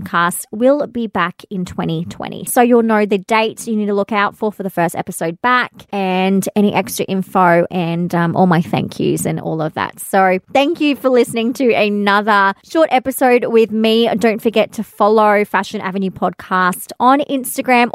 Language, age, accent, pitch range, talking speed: English, 20-39, Australian, 190-235 Hz, 185 wpm